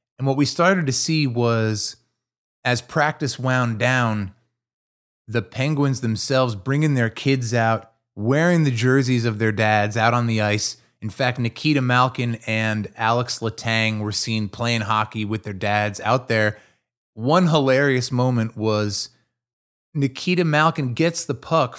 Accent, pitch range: American, 110-140 Hz